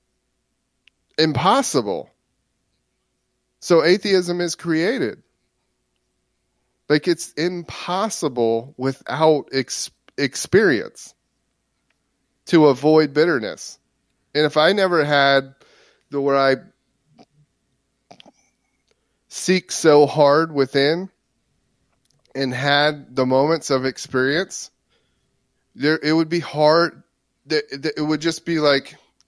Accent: American